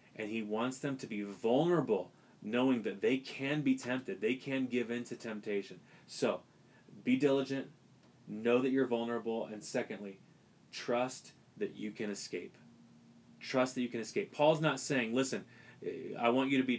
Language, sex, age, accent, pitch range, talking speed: English, male, 30-49, American, 115-150 Hz, 170 wpm